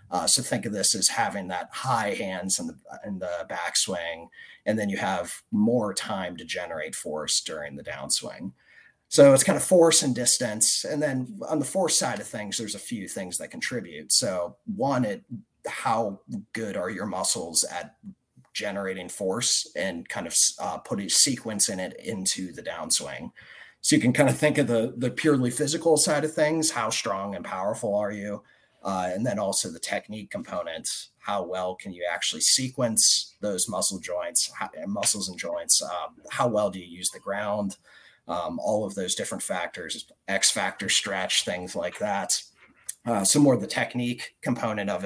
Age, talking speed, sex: 30-49, 185 wpm, male